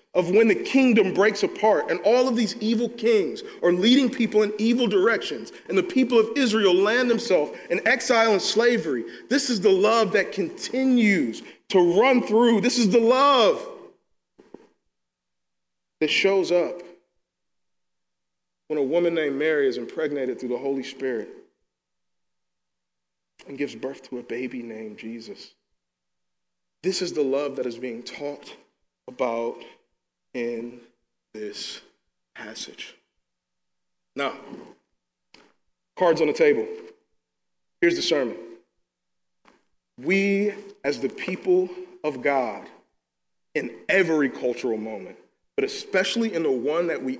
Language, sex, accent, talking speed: English, male, American, 130 wpm